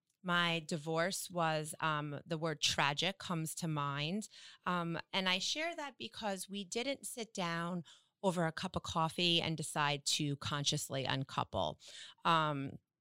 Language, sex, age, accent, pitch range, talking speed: English, female, 30-49, American, 155-190 Hz, 145 wpm